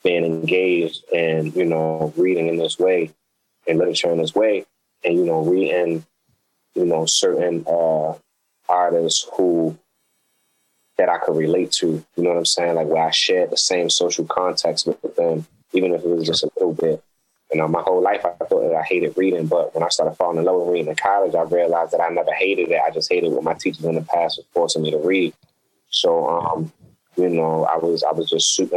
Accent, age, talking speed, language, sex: American, 20-39, 220 wpm, English, male